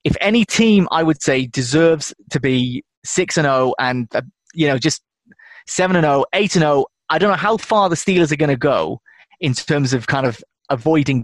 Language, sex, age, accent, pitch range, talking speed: English, male, 20-39, British, 130-165 Hz, 210 wpm